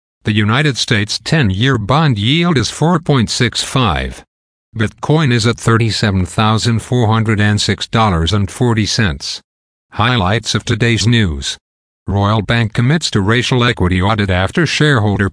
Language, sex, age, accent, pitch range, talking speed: English, male, 60-79, American, 95-125 Hz, 100 wpm